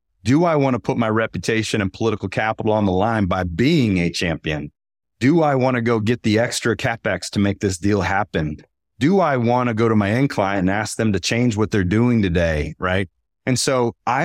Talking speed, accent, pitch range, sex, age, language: 225 wpm, American, 95-130 Hz, male, 30-49, English